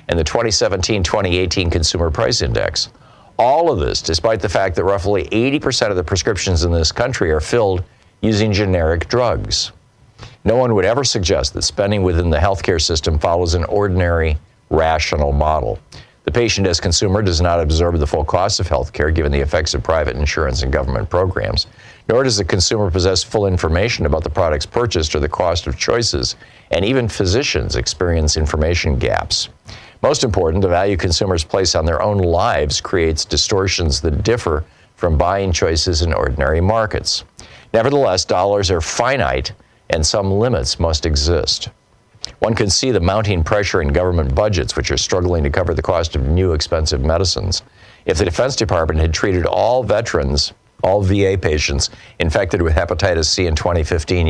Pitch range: 80-100 Hz